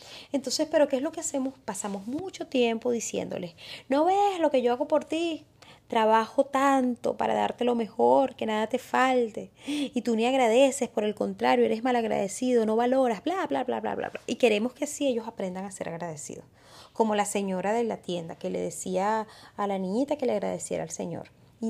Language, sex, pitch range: Spanish, female, 190-265 Hz